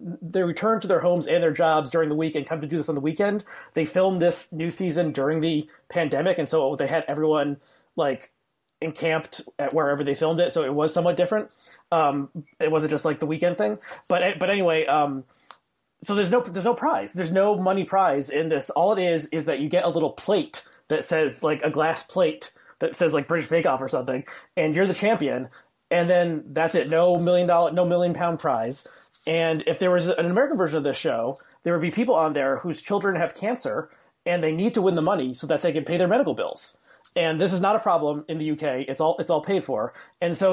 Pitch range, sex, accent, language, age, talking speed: 155-185 Hz, male, American, English, 30-49, 235 wpm